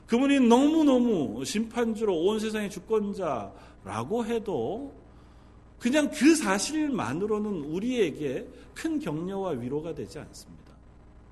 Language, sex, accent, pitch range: Korean, male, native, 180-240 Hz